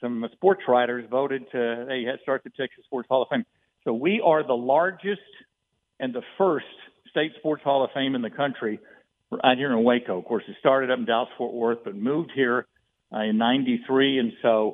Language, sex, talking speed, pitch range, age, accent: English, male, 200 wpm, 115-140 Hz, 50-69, American